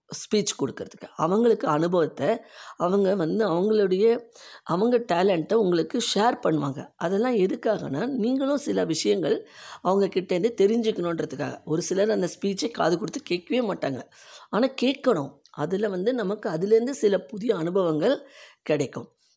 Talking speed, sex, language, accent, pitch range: 115 wpm, female, Tamil, native, 140-205 Hz